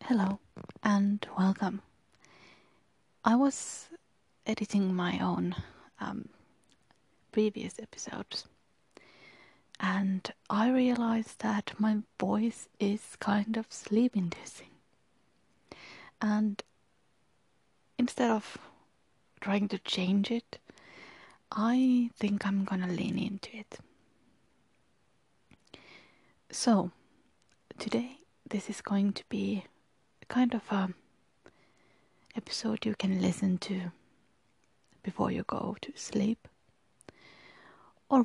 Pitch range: 195-225 Hz